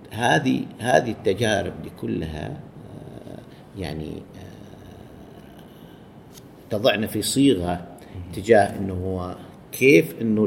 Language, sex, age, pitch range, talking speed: Arabic, male, 50-69, 95-120 Hz, 75 wpm